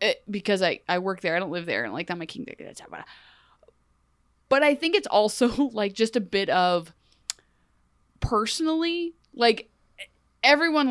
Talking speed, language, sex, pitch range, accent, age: 160 wpm, English, female, 175-220 Hz, American, 20-39